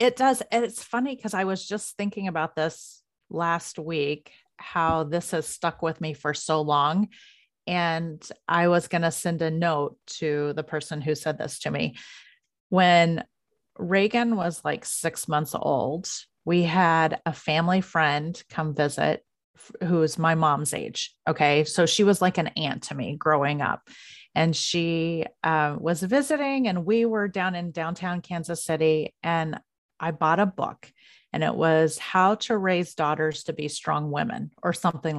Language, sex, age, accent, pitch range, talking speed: English, female, 30-49, American, 160-205 Hz, 170 wpm